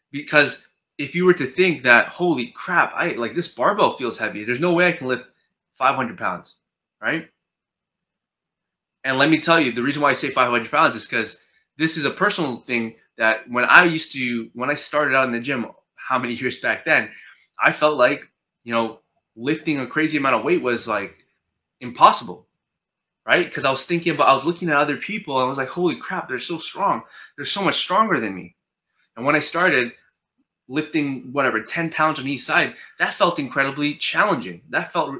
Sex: male